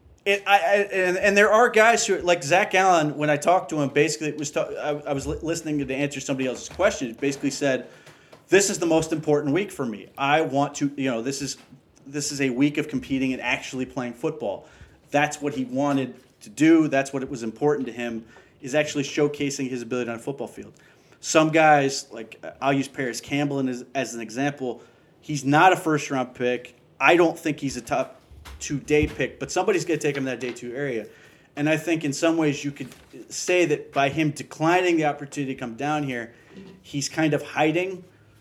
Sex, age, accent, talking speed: male, 30-49, American, 220 wpm